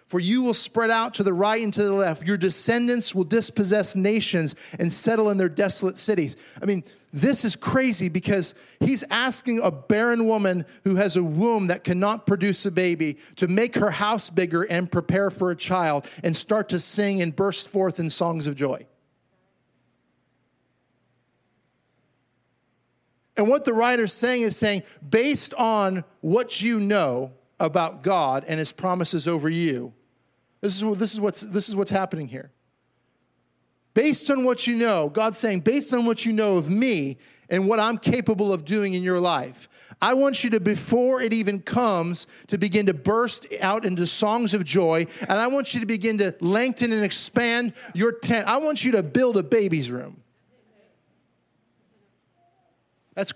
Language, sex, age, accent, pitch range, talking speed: English, male, 50-69, American, 175-225 Hz, 175 wpm